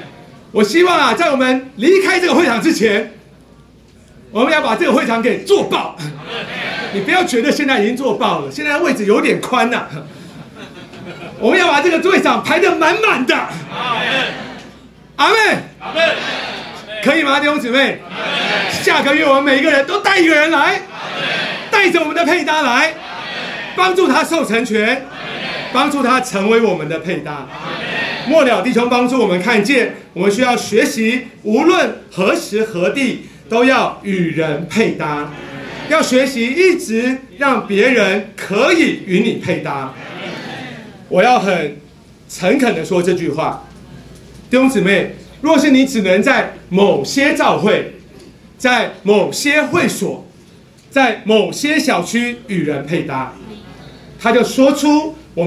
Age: 40-59